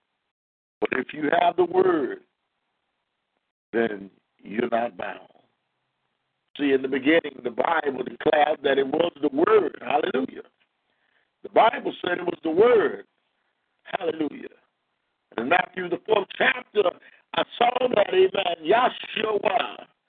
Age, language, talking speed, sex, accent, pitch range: 50-69, English, 120 wpm, male, American, 185-275 Hz